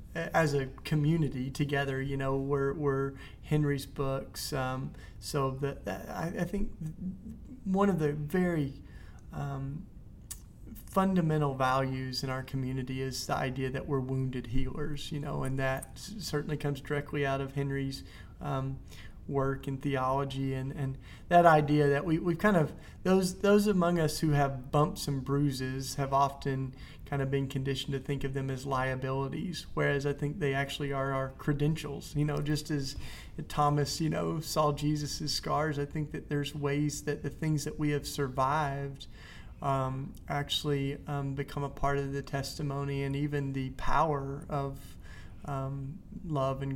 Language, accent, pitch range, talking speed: English, American, 135-145 Hz, 160 wpm